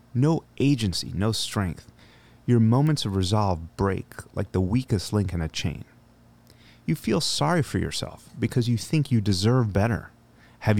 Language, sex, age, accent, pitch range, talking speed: English, male, 30-49, American, 95-125 Hz, 155 wpm